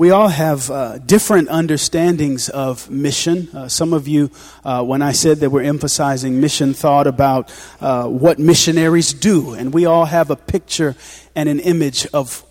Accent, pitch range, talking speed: American, 145-210 Hz, 175 wpm